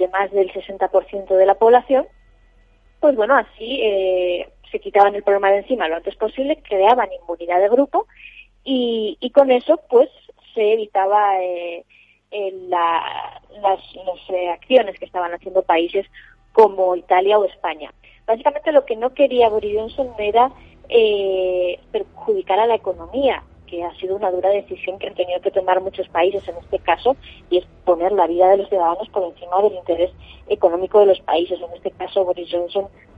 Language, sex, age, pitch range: Spanish, female, 20-39, 185-250 Hz